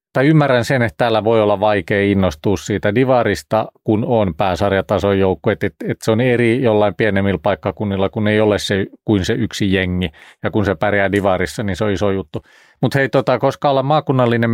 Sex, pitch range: male, 100-115 Hz